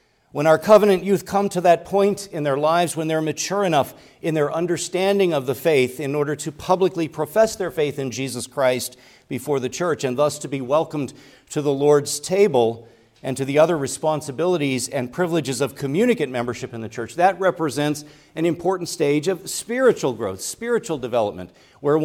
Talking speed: 180 wpm